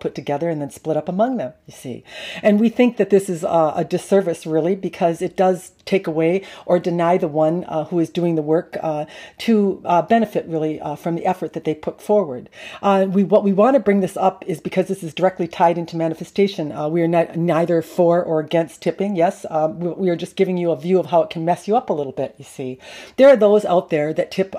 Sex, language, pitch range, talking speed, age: female, English, 160-195 Hz, 255 wpm, 40-59